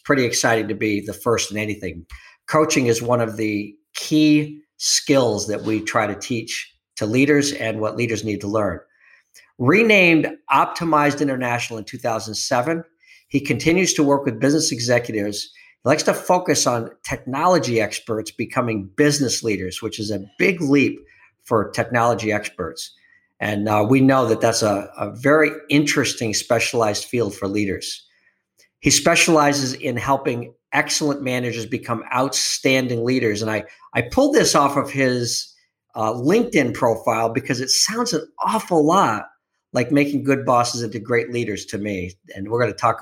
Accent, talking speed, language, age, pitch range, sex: American, 155 wpm, English, 50-69, 105-145 Hz, male